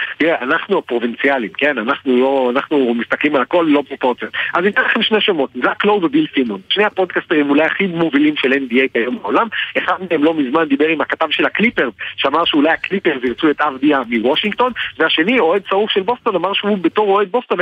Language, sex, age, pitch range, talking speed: Hebrew, male, 50-69, 145-205 Hz, 190 wpm